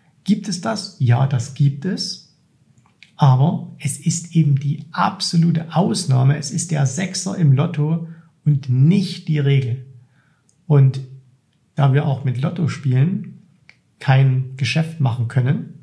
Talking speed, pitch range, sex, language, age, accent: 135 wpm, 135-170 Hz, male, German, 50-69, German